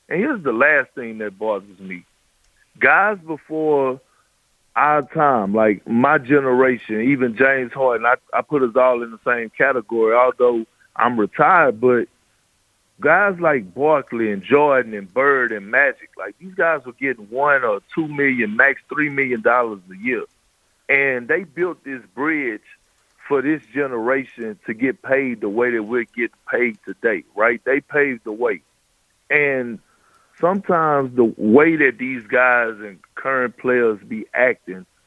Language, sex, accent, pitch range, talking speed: English, male, American, 120-155 Hz, 155 wpm